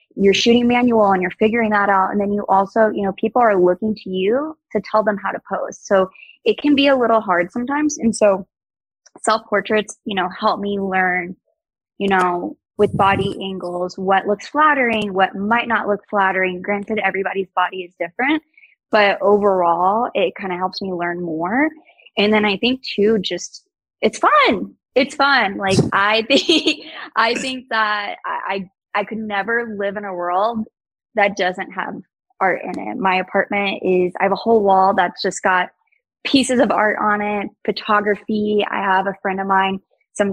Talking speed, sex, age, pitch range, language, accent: 185 wpm, female, 20-39, 190-220 Hz, English, American